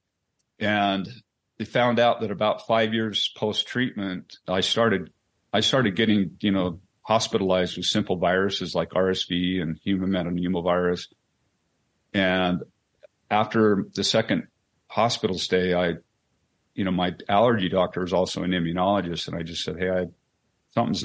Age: 50-69